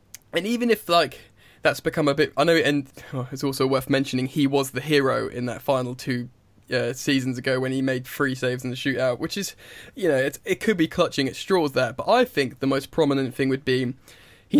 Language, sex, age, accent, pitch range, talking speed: English, male, 10-29, British, 125-145 Hz, 225 wpm